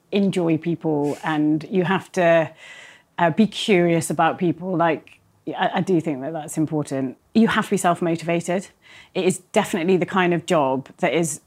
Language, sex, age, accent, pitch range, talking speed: English, female, 30-49, British, 160-205 Hz, 175 wpm